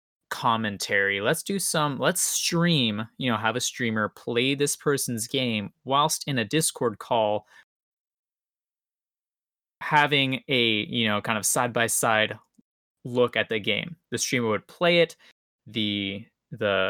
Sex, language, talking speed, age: male, English, 140 wpm, 20-39